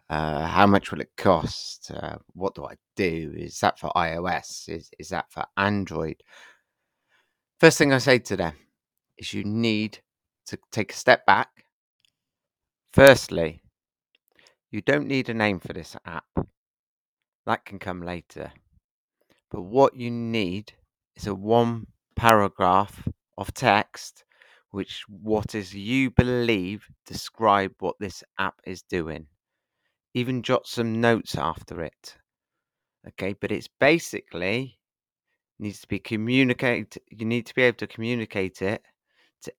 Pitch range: 95-120 Hz